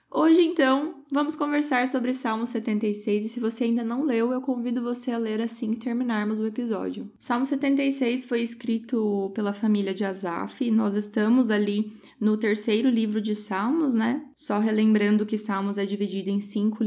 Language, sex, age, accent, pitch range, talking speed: Portuguese, female, 10-29, Brazilian, 210-250 Hz, 175 wpm